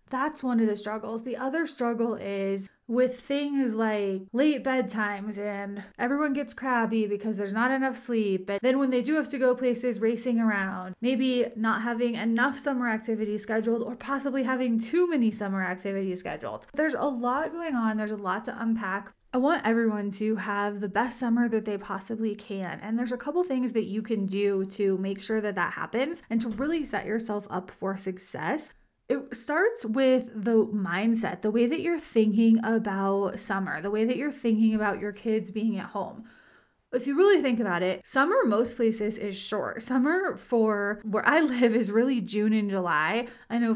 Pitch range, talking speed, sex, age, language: 205-250 Hz, 190 wpm, female, 20-39, English